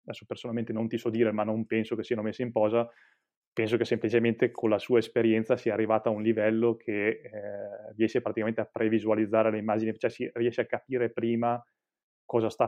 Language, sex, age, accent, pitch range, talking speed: Italian, male, 20-39, native, 110-120 Hz, 200 wpm